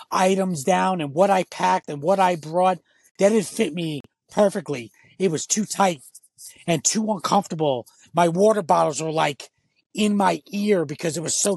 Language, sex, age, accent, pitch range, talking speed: English, male, 30-49, American, 150-185 Hz, 175 wpm